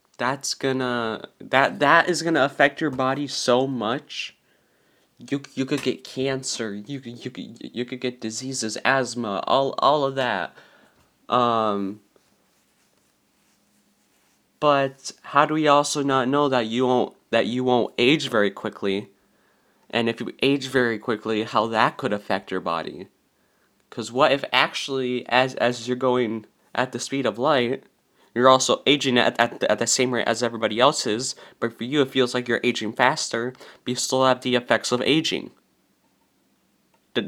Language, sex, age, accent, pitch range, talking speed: English, male, 20-39, American, 115-135 Hz, 165 wpm